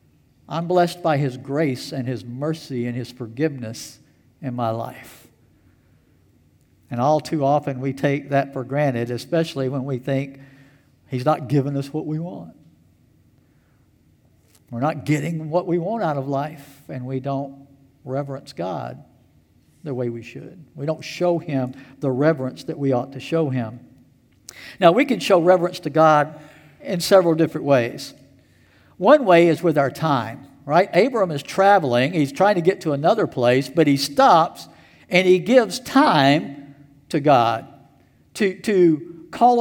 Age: 60-79